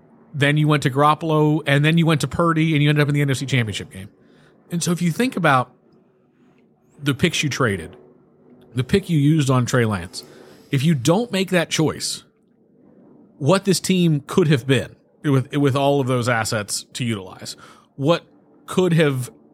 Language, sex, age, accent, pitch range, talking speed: English, male, 30-49, American, 115-155 Hz, 185 wpm